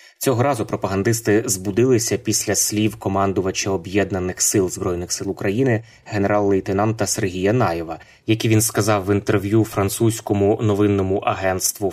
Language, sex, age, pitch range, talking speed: Ukrainian, male, 20-39, 100-115 Hz, 115 wpm